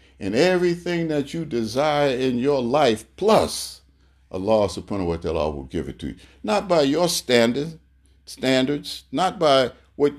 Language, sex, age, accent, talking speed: English, male, 50-69, American, 155 wpm